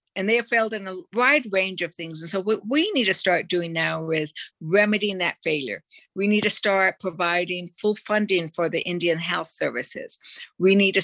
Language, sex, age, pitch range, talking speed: English, female, 60-79, 170-210 Hz, 205 wpm